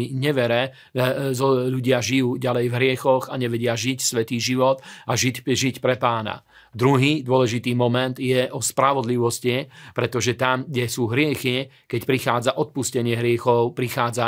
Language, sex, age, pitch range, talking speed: Slovak, male, 40-59, 120-135 Hz, 135 wpm